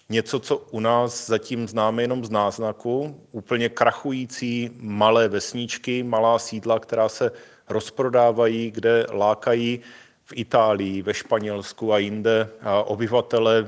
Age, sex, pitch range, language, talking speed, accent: 30-49, male, 105-120 Hz, Czech, 125 wpm, native